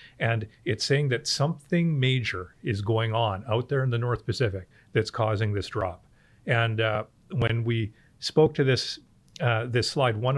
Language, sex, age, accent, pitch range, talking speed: English, male, 40-59, American, 110-135 Hz, 175 wpm